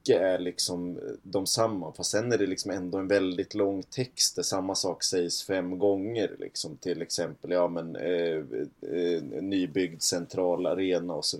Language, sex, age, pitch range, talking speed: Swedish, male, 20-39, 90-105 Hz, 165 wpm